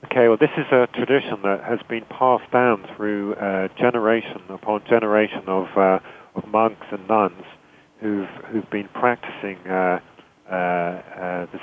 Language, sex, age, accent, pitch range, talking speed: English, male, 40-59, British, 95-115 Hz, 155 wpm